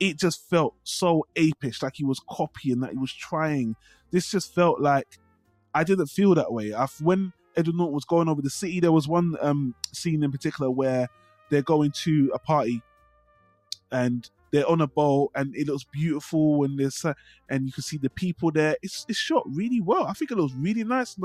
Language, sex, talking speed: English, male, 210 wpm